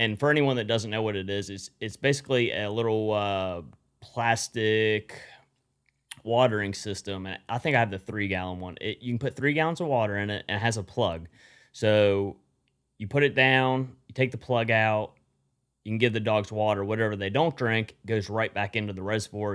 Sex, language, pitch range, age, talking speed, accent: male, English, 95-115 Hz, 30-49, 205 wpm, American